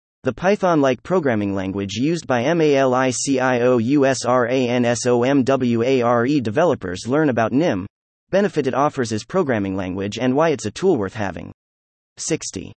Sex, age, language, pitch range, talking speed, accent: male, 30-49, English, 105-155 Hz, 120 wpm, American